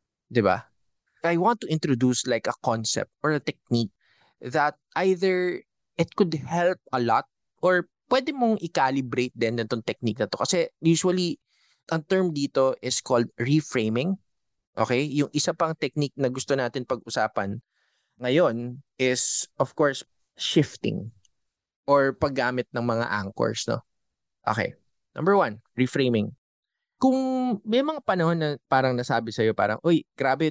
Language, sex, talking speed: Filipino, male, 140 wpm